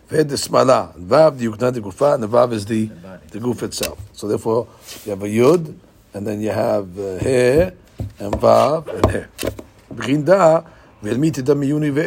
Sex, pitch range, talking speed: male, 110-150 Hz, 70 wpm